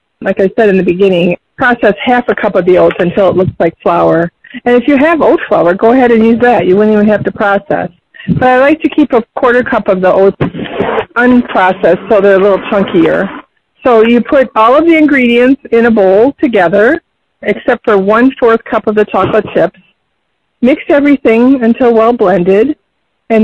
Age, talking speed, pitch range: 40-59, 195 wpm, 205-255 Hz